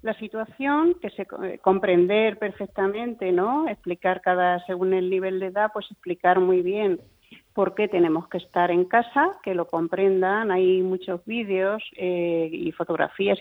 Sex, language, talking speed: female, Spanish, 150 wpm